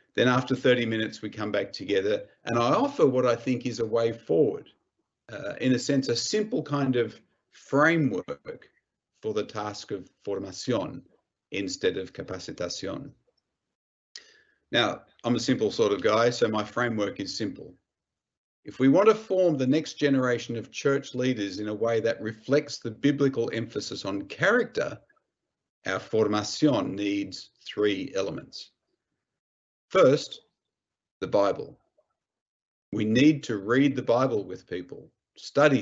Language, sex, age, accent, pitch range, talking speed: English, male, 50-69, Australian, 115-155 Hz, 140 wpm